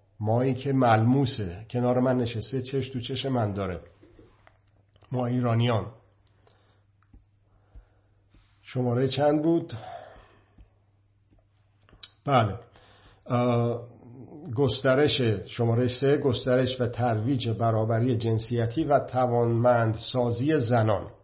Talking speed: 80 wpm